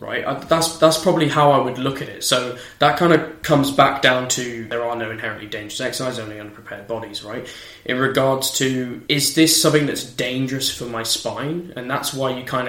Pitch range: 115-135 Hz